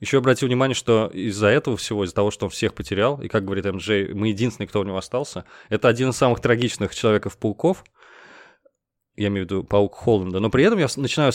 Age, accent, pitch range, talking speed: 20-39, native, 105-125 Hz, 210 wpm